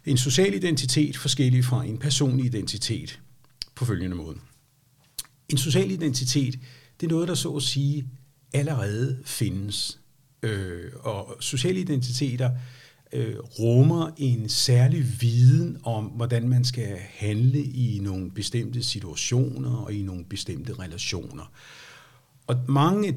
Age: 60-79